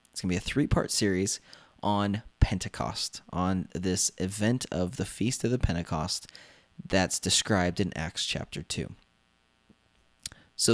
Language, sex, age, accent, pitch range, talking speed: English, male, 20-39, American, 90-125 Hz, 140 wpm